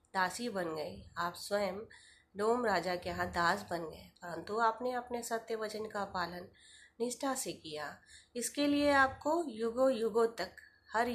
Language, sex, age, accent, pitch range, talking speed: Hindi, female, 20-39, native, 170-215 Hz, 160 wpm